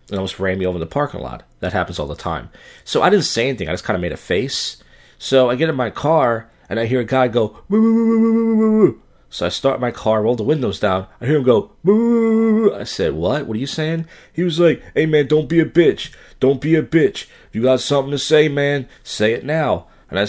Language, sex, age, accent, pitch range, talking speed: English, male, 40-59, American, 105-155 Hz, 245 wpm